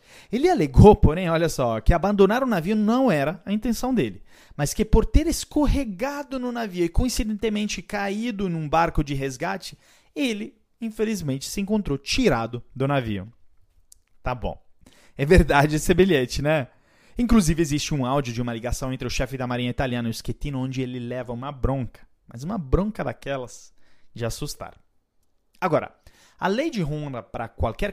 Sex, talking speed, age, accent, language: male, 165 wpm, 30-49, Brazilian, Portuguese